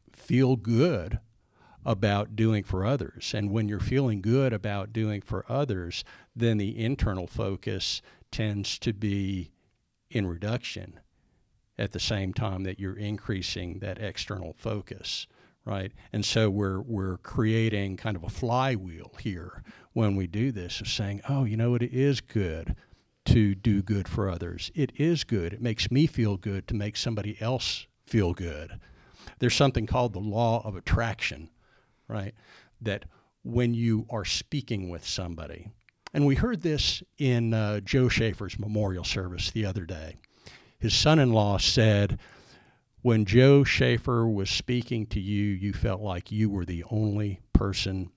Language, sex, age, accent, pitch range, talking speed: English, male, 50-69, American, 95-115 Hz, 150 wpm